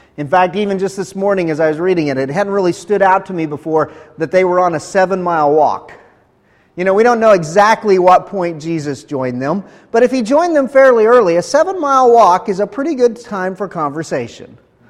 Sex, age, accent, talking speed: male, 40-59, American, 220 wpm